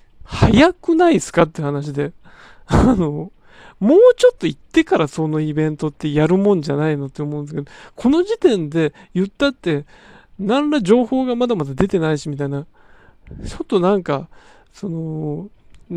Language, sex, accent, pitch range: Japanese, male, native, 155-230 Hz